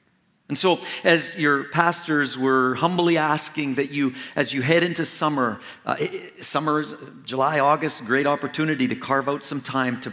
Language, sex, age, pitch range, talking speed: English, male, 50-69, 115-150 Hz, 160 wpm